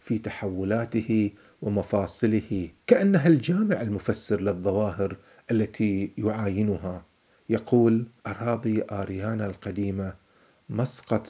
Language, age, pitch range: Arabic, 40-59, 95-115 Hz